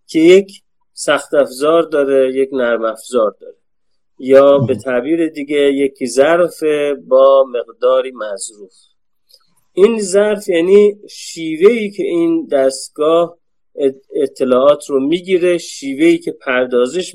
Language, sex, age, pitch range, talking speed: Persian, male, 30-49, 135-205 Hz, 110 wpm